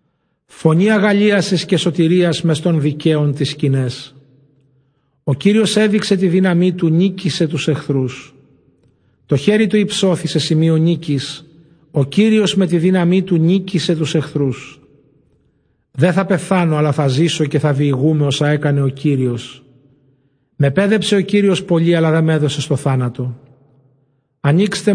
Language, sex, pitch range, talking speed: Greek, male, 145-185 Hz, 140 wpm